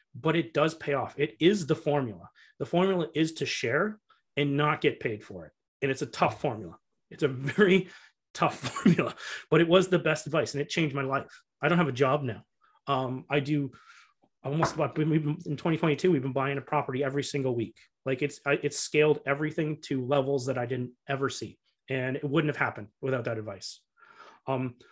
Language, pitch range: English, 135-160 Hz